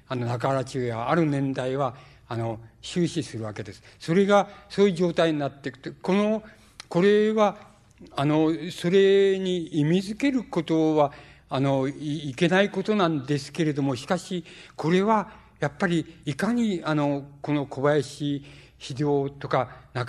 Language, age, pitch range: Japanese, 60-79, 130-160 Hz